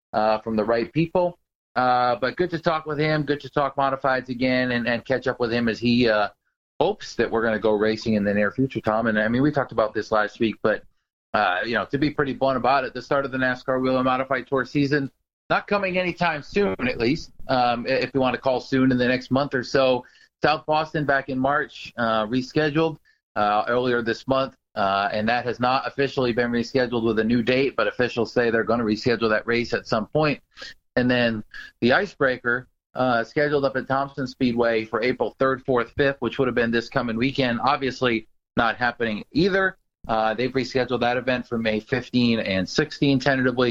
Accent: American